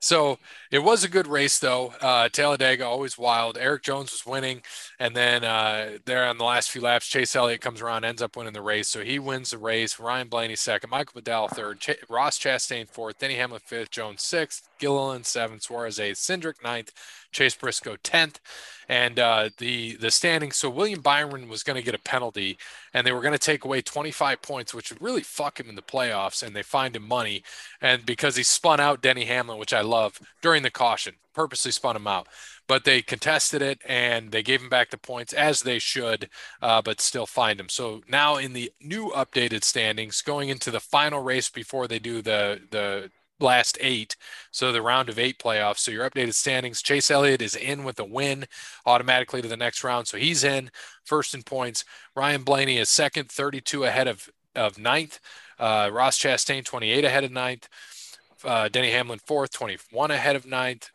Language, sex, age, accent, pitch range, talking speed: English, male, 20-39, American, 115-140 Hz, 200 wpm